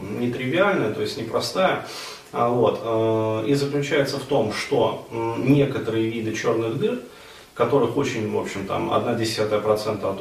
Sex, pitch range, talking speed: male, 110-130 Hz, 140 wpm